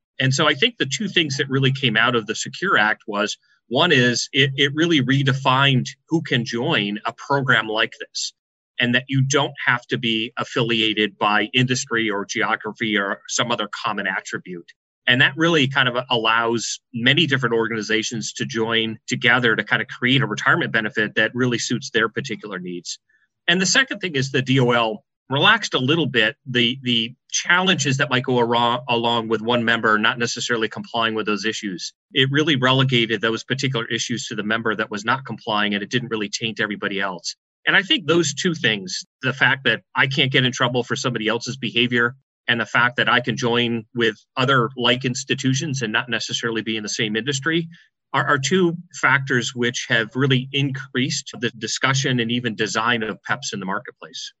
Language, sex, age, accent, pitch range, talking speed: English, male, 30-49, American, 115-135 Hz, 190 wpm